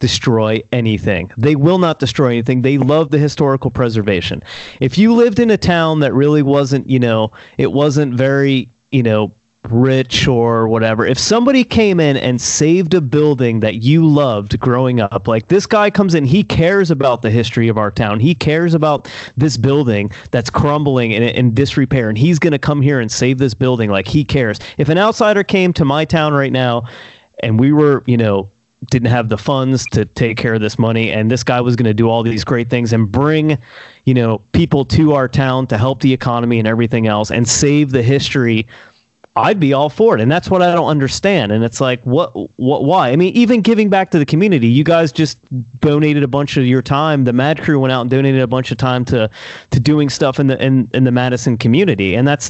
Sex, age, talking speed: male, 30-49, 220 wpm